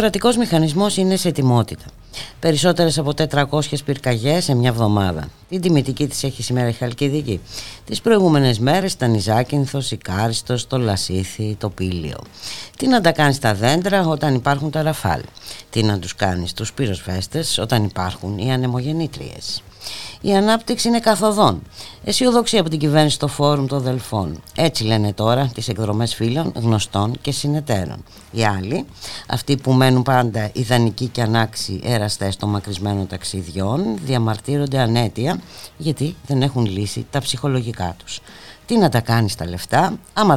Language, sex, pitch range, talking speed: Greek, female, 105-150 Hz, 150 wpm